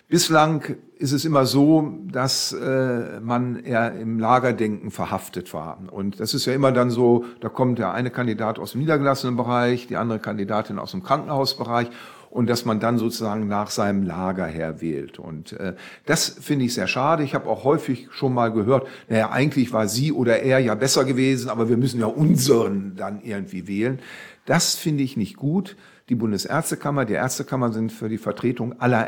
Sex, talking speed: male, 185 wpm